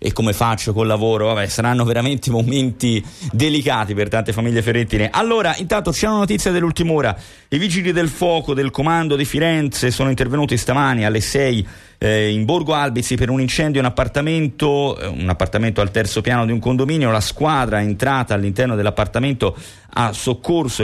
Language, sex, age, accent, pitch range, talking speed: Italian, male, 30-49, native, 95-130 Hz, 170 wpm